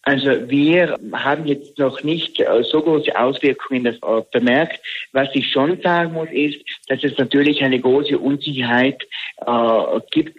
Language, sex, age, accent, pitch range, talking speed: German, male, 60-79, German, 125-155 Hz, 145 wpm